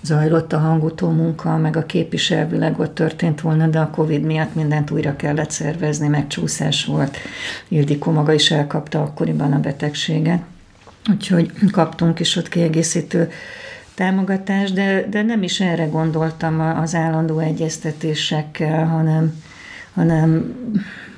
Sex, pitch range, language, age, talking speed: female, 150-165 Hz, Hungarian, 50-69, 125 wpm